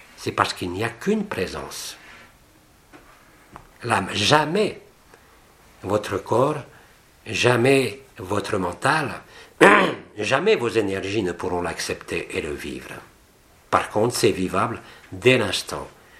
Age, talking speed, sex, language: 60-79, 105 wpm, male, French